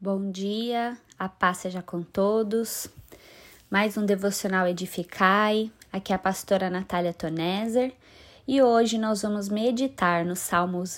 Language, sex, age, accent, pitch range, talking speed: Portuguese, female, 20-39, Brazilian, 180-220 Hz, 130 wpm